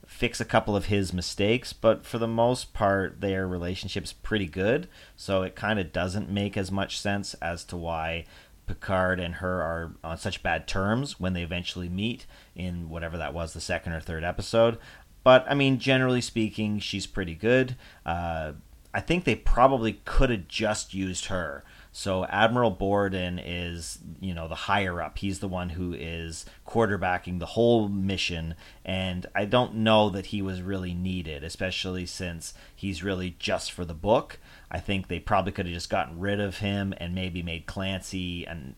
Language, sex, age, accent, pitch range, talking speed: English, male, 40-59, American, 90-105 Hz, 180 wpm